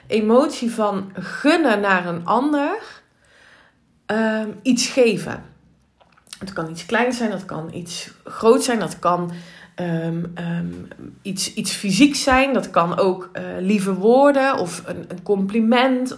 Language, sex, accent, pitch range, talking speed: Dutch, female, Dutch, 180-245 Hz, 125 wpm